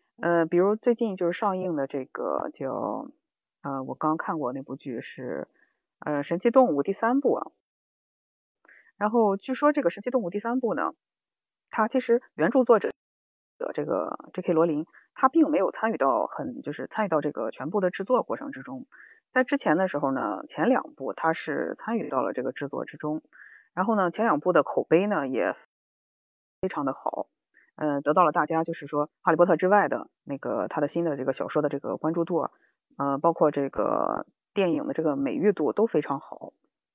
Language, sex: Chinese, female